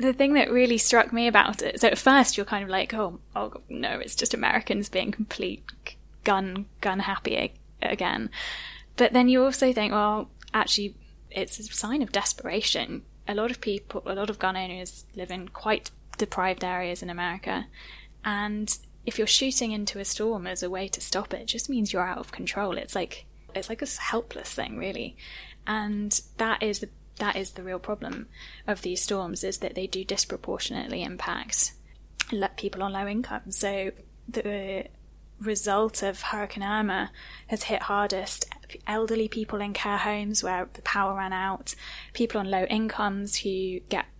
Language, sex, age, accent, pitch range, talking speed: English, female, 10-29, British, 195-225 Hz, 175 wpm